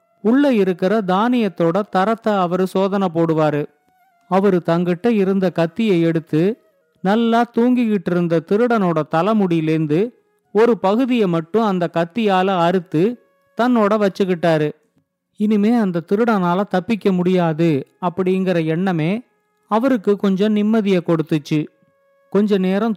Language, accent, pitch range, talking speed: Tamil, native, 175-220 Hz, 100 wpm